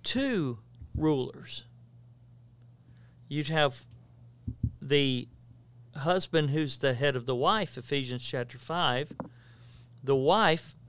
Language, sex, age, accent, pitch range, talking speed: English, male, 40-59, American, 120-180 Hz, 95 wpm